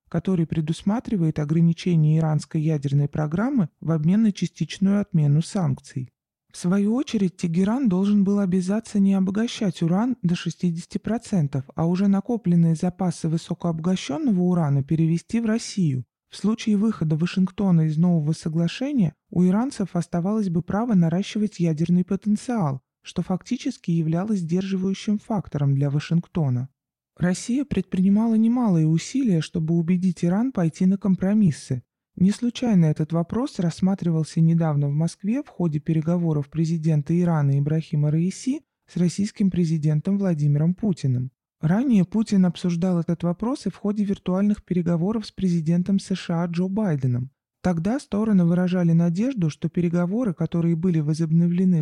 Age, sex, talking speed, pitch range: 20-39, male, 125 wpm, 165-200 Hz